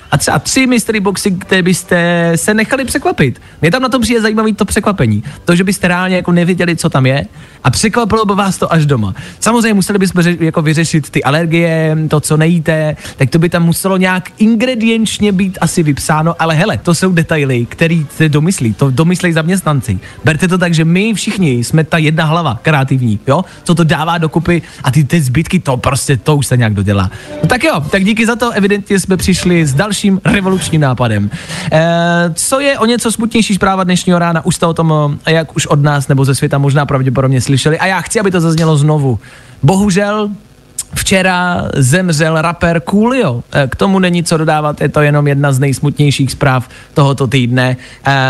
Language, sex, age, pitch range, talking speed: Czech, male, 20-39, 140-185 Hz, 195 wpm